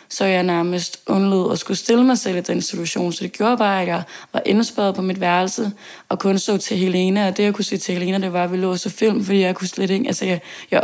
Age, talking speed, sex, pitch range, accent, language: 20-39, 270 wpm, female, 185-205 Hz, native, Danish